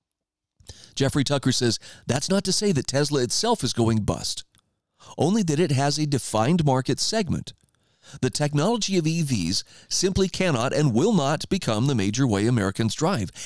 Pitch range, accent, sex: 120-175 Hz, American, male